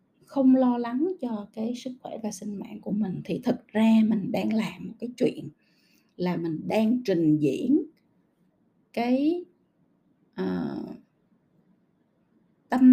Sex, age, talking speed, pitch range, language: female, 20-39, 130 wpm, 190-255 Hz, Vietnamese